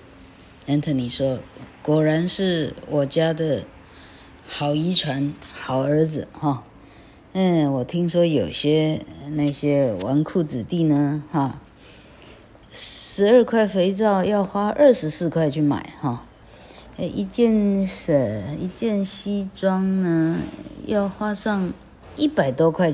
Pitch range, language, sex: 130-170 Hz, Chinese, female